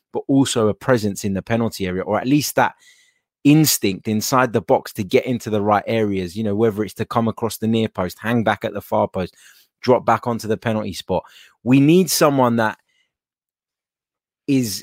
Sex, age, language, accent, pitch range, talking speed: male, 20-39, English, British, 105-120 Hz, 200 wpm